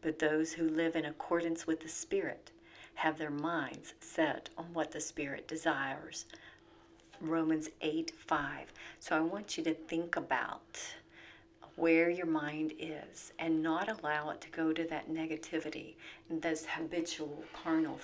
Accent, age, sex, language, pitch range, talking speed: American, 50-69, female, English, 155-170 Hz, 150 wpm